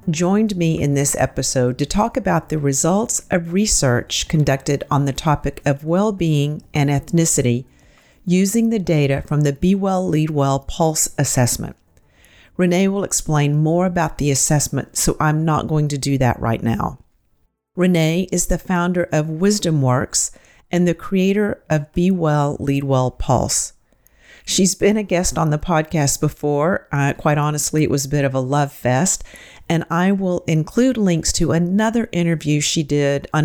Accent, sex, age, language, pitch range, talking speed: American, female, 40-59, English, 140-180 Hz, 165 wpm